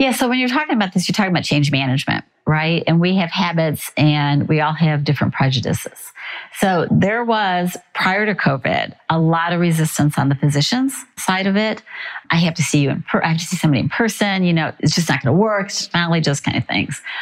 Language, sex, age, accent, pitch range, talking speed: English, female, 40-59, American, 150-195 Hz, 230 wpm